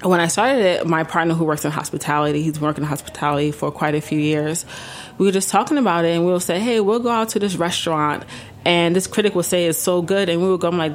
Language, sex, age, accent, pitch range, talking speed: English, female, 20-39, American, 155-195 Hz, 280 wpm